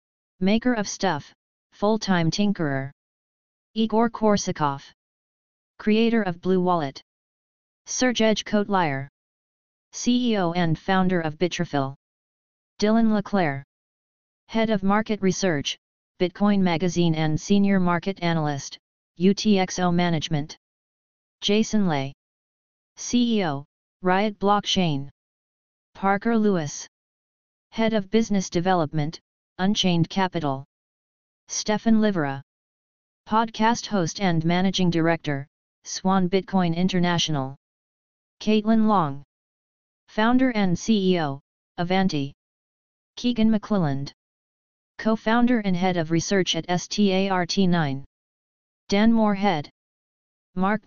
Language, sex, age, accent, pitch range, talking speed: English, female, 30-49, American, 165-210 Hz, 85 wpm